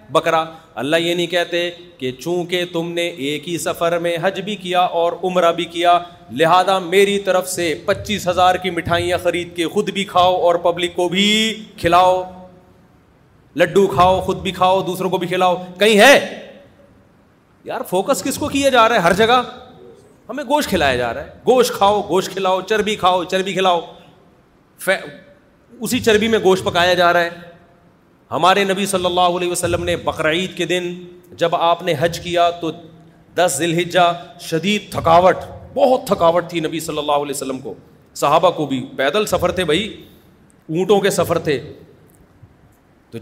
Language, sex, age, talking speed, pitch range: Urdu, male, 30-49, 170 wpm, 155-185 Hz